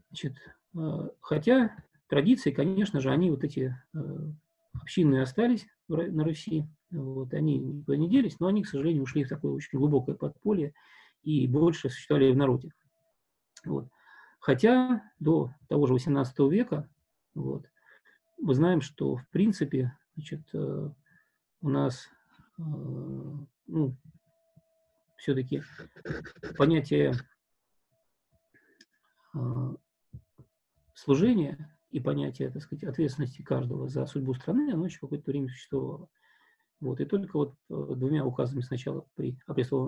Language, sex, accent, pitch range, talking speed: Russian, male, native, 130-175 Hz, 120 wpm